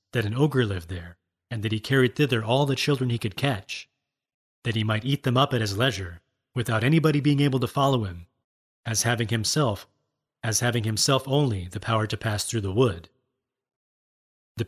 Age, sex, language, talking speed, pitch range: 30-49, male, English, 190 wpm, 110-145 Hz